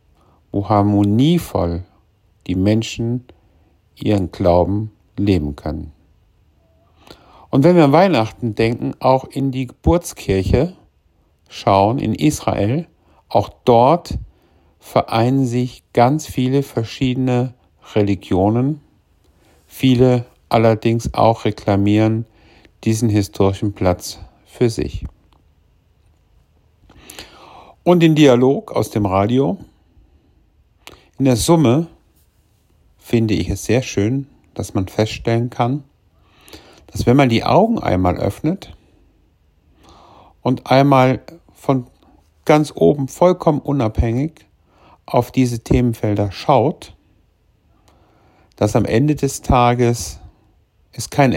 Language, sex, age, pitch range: German, male, 50-69, 85-125 Hz